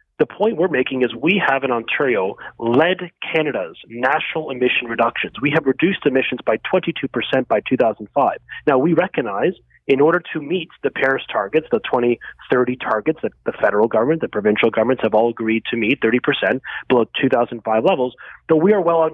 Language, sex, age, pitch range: English, male, 30-49, 130-175 Hz